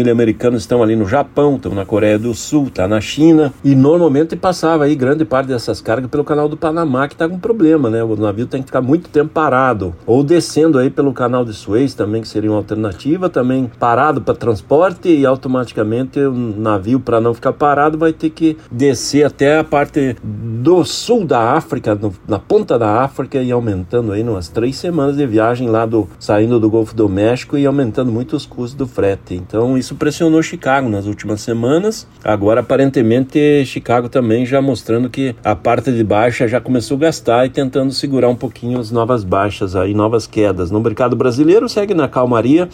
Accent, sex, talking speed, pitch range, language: Brazilian, male, 195 wpm, 110-145 Hz, Portuguese